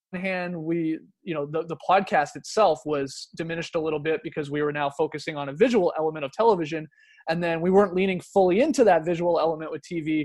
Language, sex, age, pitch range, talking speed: English, male, 20-39, 145-185 Hz, 215 wpm